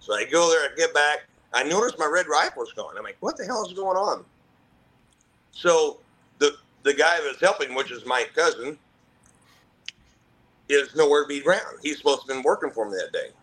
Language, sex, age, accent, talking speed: English, male, 50-69, American, 210 wpm